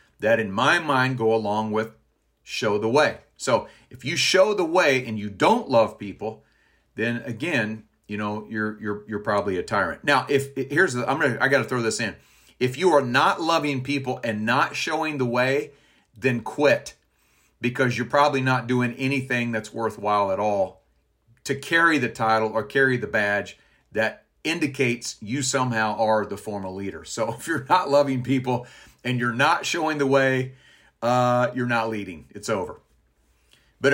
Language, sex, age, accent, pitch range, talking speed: English, male, 40-59, American, 110-135 Hz, 175 wpm